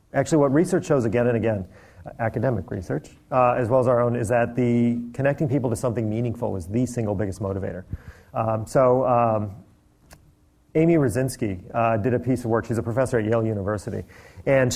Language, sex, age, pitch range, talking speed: English, male, 40-59, 110-135 Hz, 185 wpm